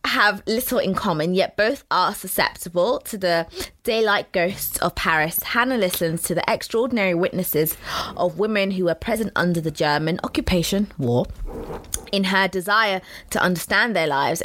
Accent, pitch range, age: British, 165-210 Hz, 20-39